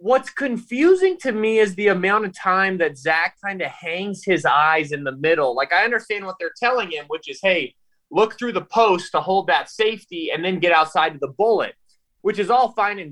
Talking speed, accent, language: 225 wpm, American, English